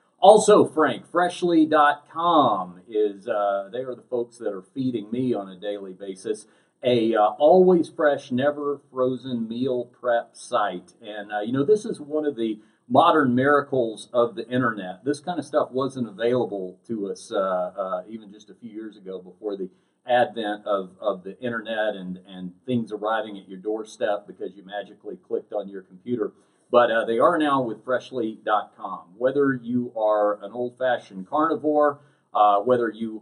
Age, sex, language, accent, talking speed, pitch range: 50-69, male, English, American, 170 wpm, 100-130 Hz